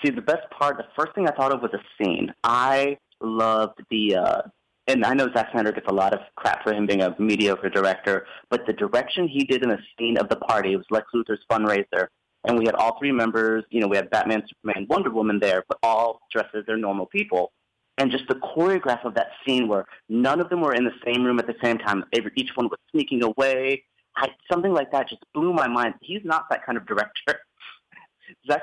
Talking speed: 230 wpm